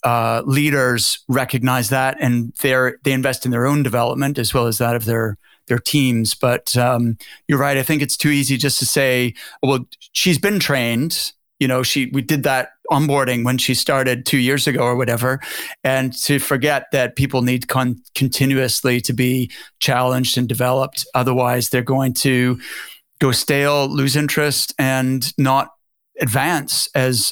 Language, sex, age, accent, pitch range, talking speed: English, male, 30-49, American, 125-145 Hz, 170 wpm